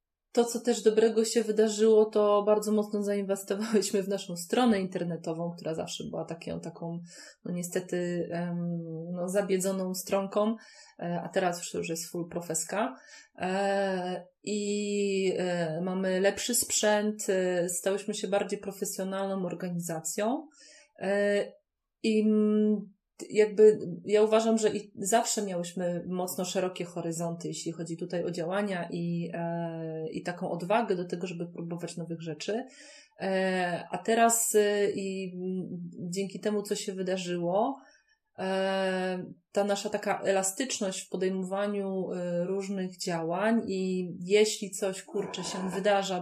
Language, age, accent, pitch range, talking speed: Polish, 30-49, native, 175-210 Hz, 115 wpm